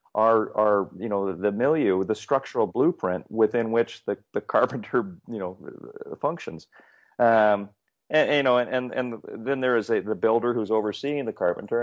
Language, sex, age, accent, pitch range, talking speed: English, male, 40-59, American, 95-125 Hz, 165 wpm